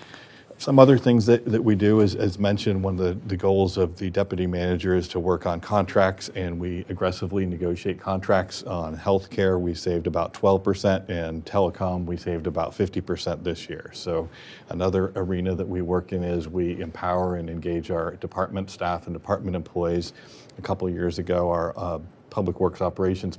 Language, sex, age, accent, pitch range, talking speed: English, male, 40-59, American, 85-95 Hz, 180 wpm